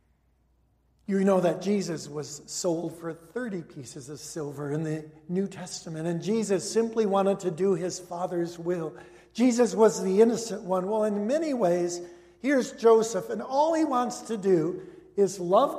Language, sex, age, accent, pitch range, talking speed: English, male, 60-79, American, 175-225 Hz, 165 wpm